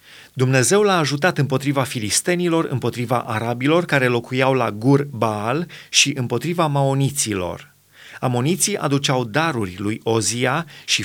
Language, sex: Romanian, male